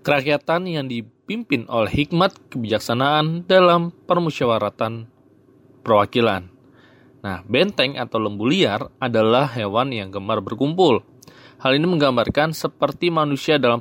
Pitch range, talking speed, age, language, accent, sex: 110-150 Hz, 110 wpm, 20-39, Indonesian, native, male